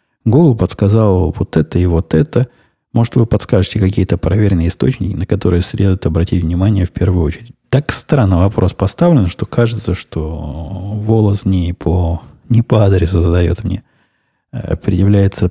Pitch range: 90-115 Hz